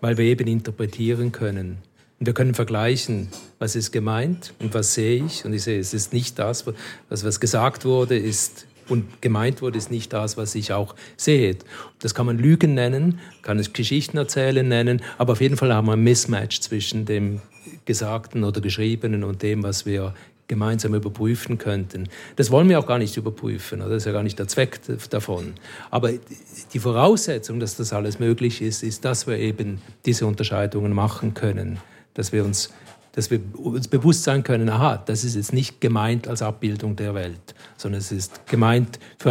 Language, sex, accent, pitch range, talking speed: German, male, German, 105-130 Hz, 190 wpm